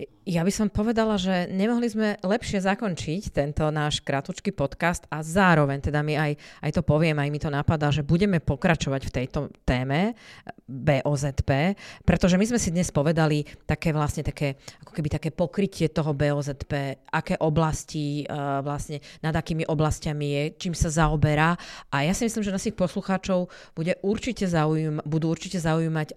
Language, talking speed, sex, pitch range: Slovak, 165 wpm, female, 145-180 Hz